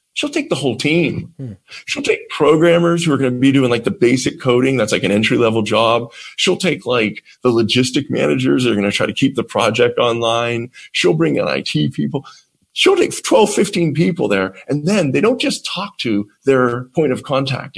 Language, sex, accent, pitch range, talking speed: English, male, American, 120-170 Hz, 205 wpm